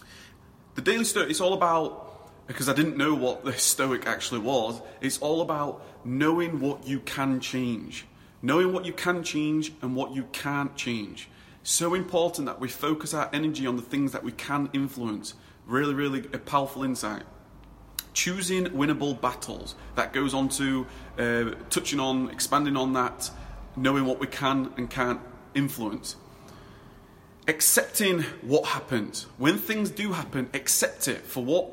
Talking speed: 155 wpm